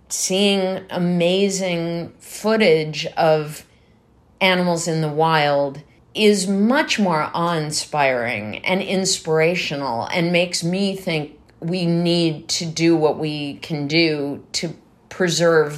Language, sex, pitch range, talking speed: English, female, 155-190 Hz, 105 wpm